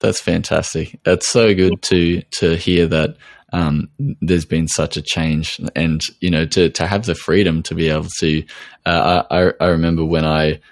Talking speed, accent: 185 wpm, Australian